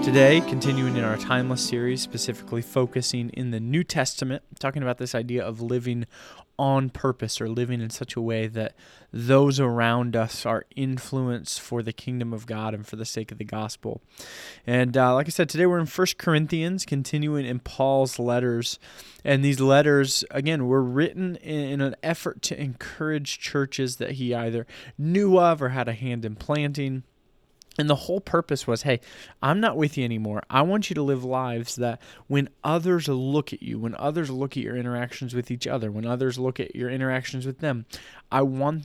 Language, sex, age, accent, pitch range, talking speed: English, male, 20-39, American, 120-145 Hz, 190 wpm